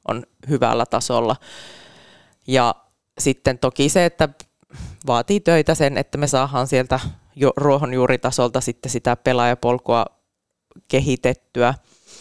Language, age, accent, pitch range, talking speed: Finnish, 20-39, native, 115-140 Hz, 100 wpm